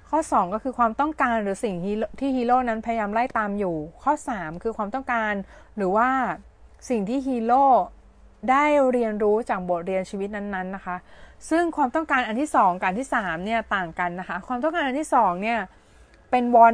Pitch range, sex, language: 185-245 Hz, female, Thai